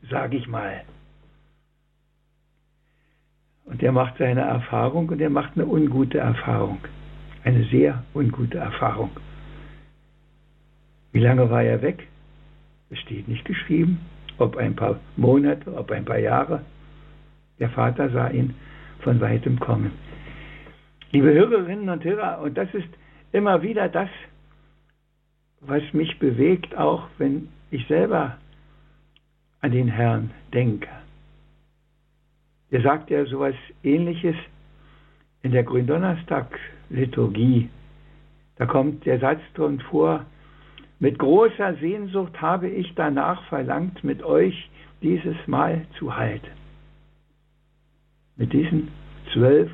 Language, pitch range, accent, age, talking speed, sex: German, 135-155 Hz, German, 60-79, 110 wpm, male